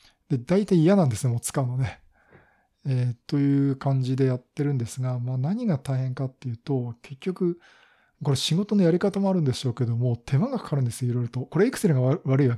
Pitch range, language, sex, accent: 120-165 Hz, Japanese, male, native